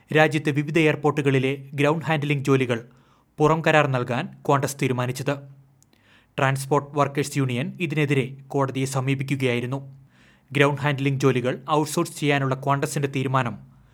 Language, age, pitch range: Malayalam, 30-49, 135-155 Hz